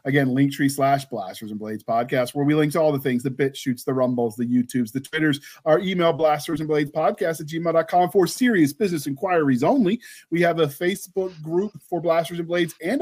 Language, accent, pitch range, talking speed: English, American, 140-185 Hz, 210 wpm